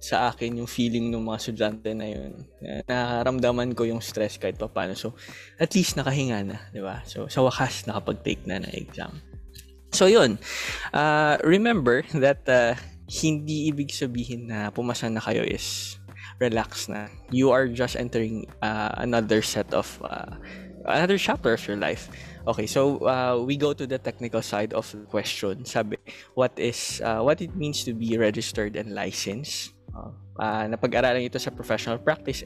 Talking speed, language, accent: 160 wpm, Filipino, native